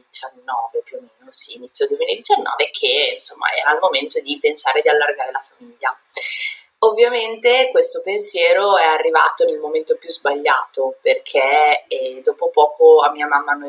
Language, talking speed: Italian, 150 wpm